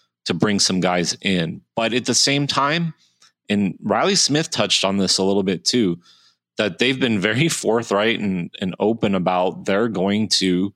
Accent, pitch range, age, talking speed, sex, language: American, 90-120 Hz, 30-49, 180 wpm, male, English